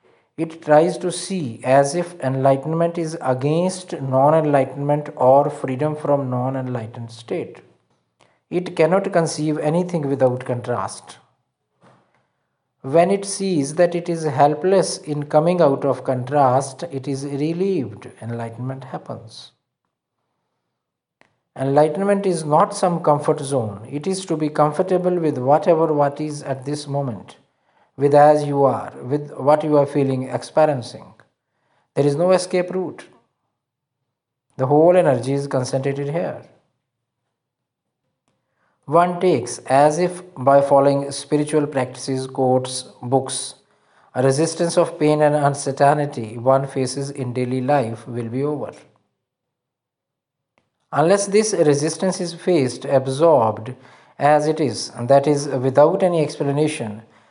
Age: 50-69